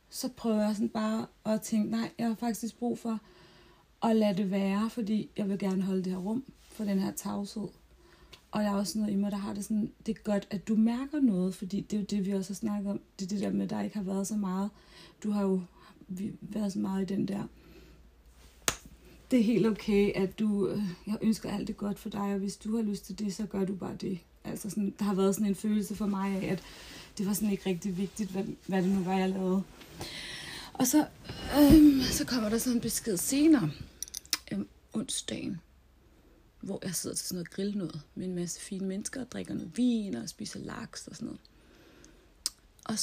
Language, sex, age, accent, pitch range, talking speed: Danish, female, 30-49, native, 195-220 Hz, 225 wpm